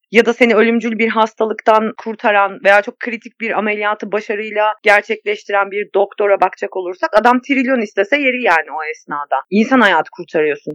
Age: 40-59